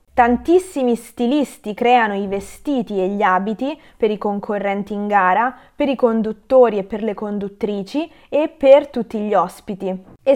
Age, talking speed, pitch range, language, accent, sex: 20-39, 150 wpm, 195-245 Hz, Italian, native, female